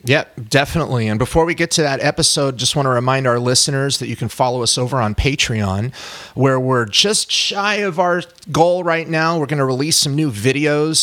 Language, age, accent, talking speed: English, 30-49, American, 220 wpm